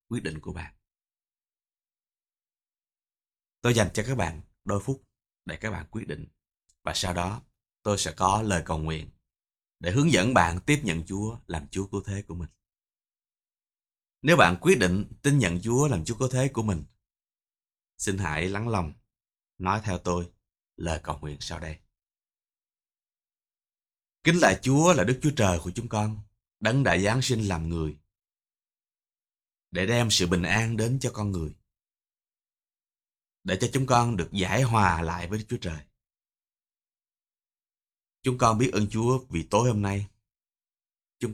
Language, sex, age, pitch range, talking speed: Vietnamese, male, 20-39, 85-115 Hz, 160 wpm